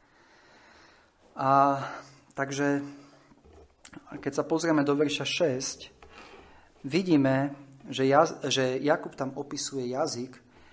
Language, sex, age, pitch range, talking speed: Slovak, male, 40-59, 130-165 Hz, 90 wpm